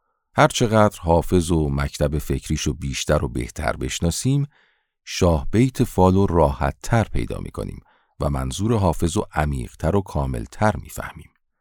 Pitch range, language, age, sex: 70-95 Hz, Persian, 50-69, male